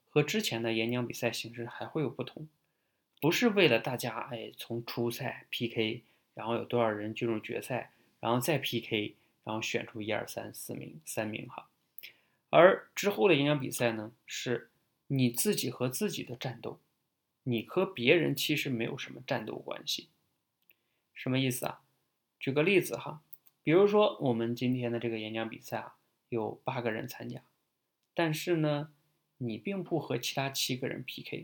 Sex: male